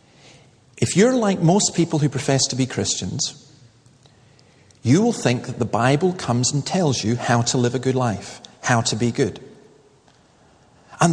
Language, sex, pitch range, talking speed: English, male, 125-185 Hz, 165 wpm